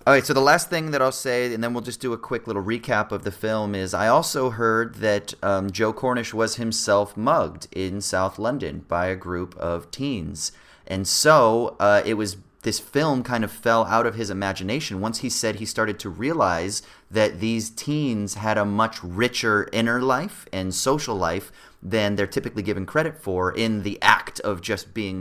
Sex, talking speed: male, 200 wpm